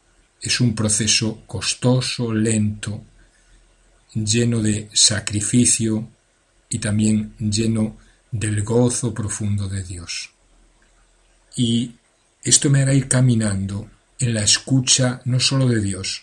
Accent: Spanish